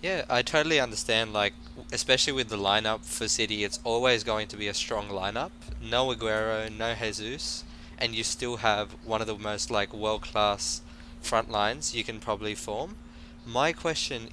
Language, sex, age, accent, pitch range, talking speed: English, male, 20-39, Australian, 100-120 Hz, 170 wpm